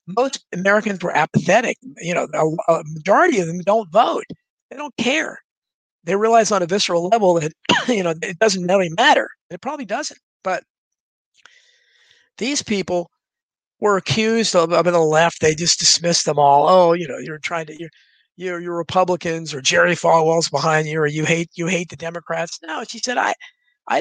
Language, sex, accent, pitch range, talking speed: English, male, American, 165-225 Hz, 180 wpm